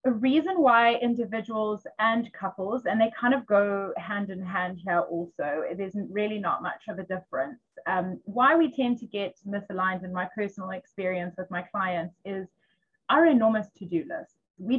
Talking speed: 180 wpm